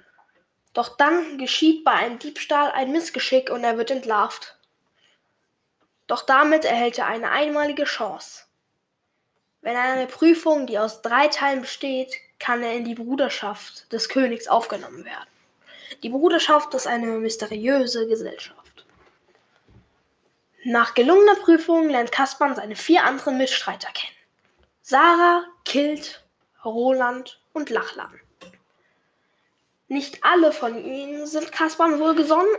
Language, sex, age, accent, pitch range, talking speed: German, female, 10-29, German, 235-310 Hz, 120 wpm